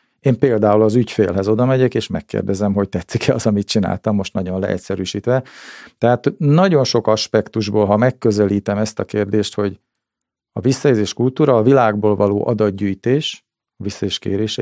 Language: Hungarian